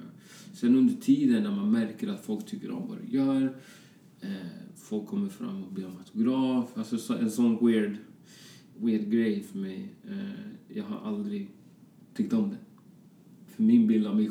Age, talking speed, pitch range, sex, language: 30-49, 160 wpm, 200-225 Hz, male, Swedish